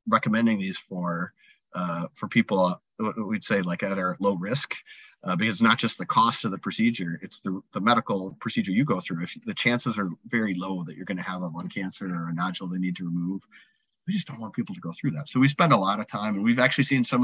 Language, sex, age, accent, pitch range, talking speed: English, male, 40-59, American, 95-145 Hz, 255 wpm